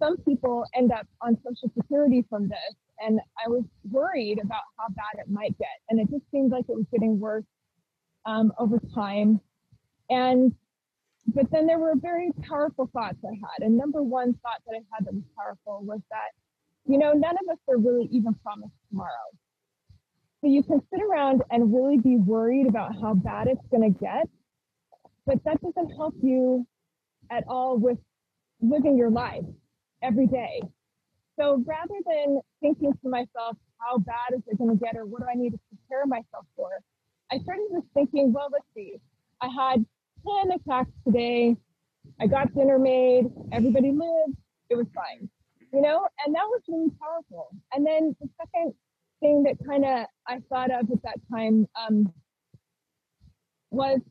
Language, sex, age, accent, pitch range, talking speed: English, female, 20-39, American, 225-285 Hz, 175 wpm